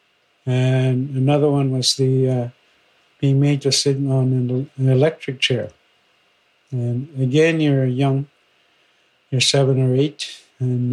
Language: English